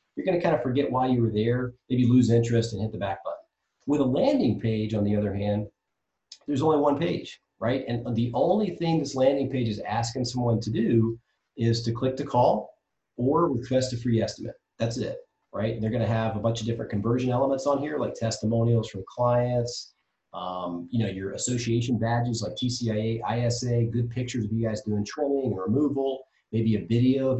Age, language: 30-49, English